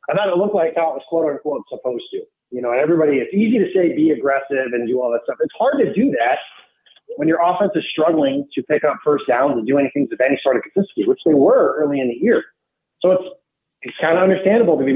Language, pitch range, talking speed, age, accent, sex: English, 130-180 Hz, 260 wpm, 30-49, American, male